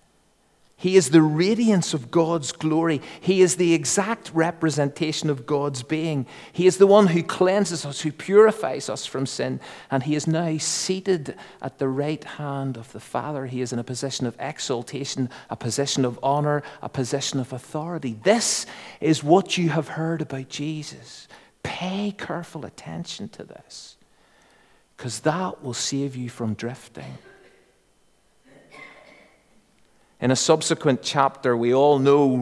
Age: 50-69